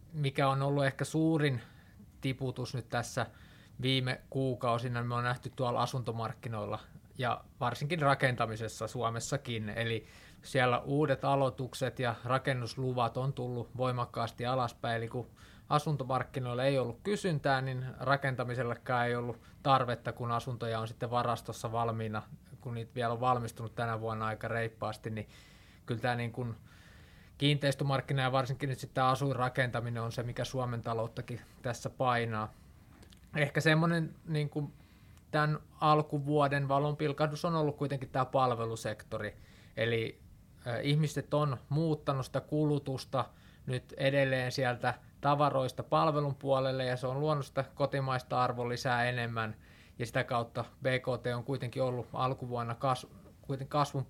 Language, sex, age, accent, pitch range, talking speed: Finnish, male, 20-39, native, 115-140 Hz, 130 wpm